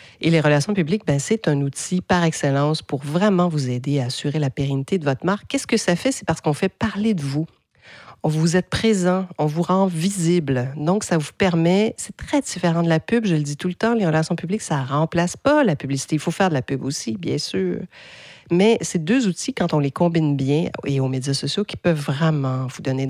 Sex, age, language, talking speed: female, 40-59, French, 240 wpm